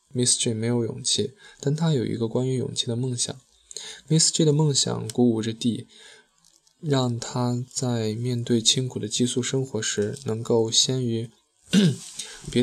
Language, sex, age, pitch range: Chinese, male, 10-29, 110-130 Hz